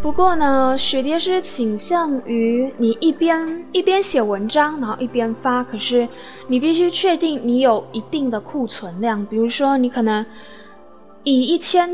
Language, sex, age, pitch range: Chinese, female, 10-29, 225-295 Hz